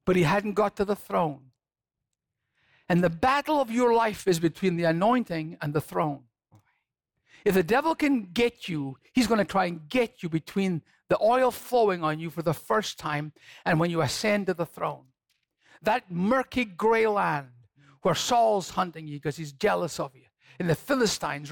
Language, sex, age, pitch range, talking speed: English, male, 50-69, 180-285 Hz, 185 wpm